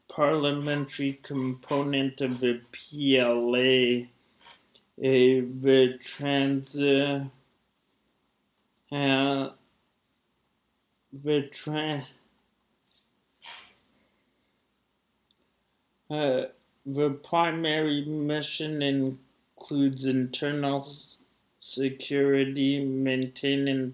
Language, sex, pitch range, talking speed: English, male, 125-140 Hz, 45 wpm